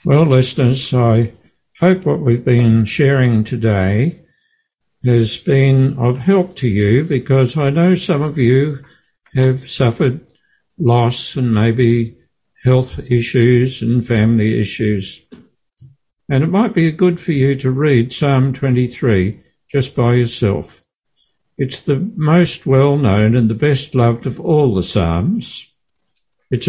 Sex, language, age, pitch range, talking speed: male, English, 60-79, 115-150 Hz, 130 wpm